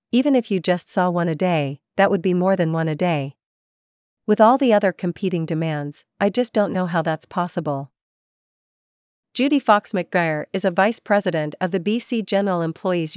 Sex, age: female, 40-59